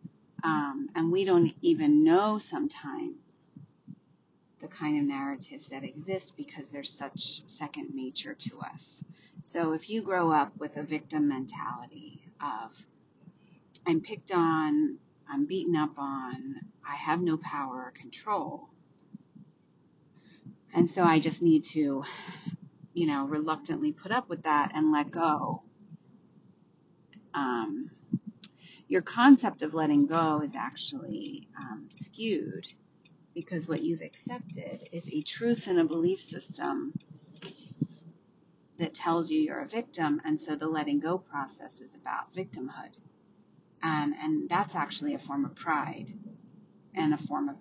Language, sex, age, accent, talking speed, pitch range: English, female, 30-49, American, 135 wpm, 155-220 Hz